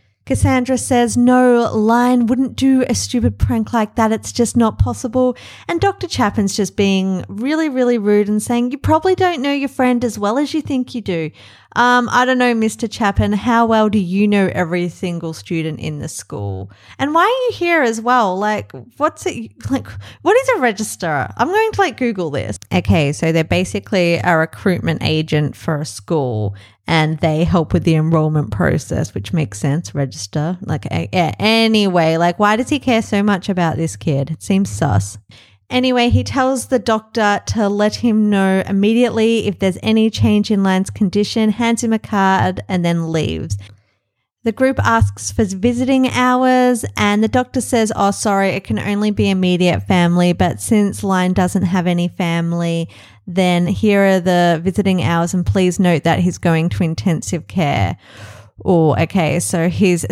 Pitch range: 160-235 Hz